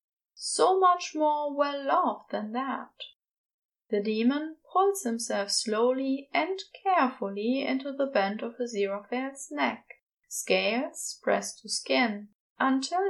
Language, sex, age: English, female, 10-29